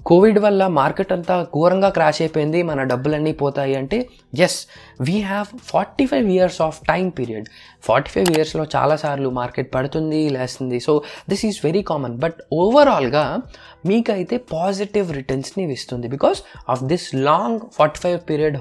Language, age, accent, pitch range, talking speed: Telugu, 20-39, native, 135-185 Hz, 150 wpm